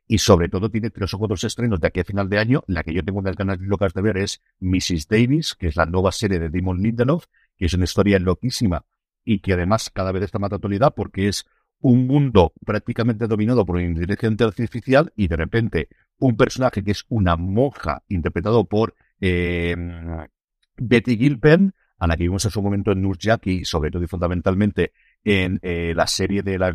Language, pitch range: Spanish, 90-110 Hz